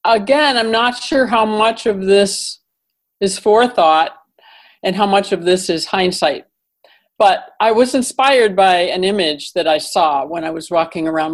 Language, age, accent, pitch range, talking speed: English, 50-69, American, 165-215 Hz, 170 wpm